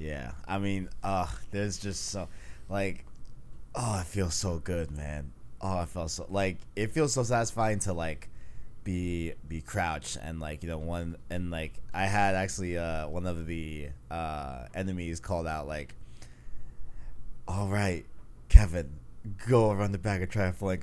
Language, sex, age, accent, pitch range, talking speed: English, male, 20-39, American, 80-100 Hz, 165 wpm